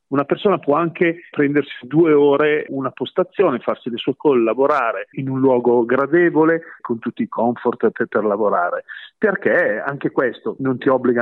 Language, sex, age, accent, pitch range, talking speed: Italian, male, 40-59, native, 115-150 Hz, 160 wpm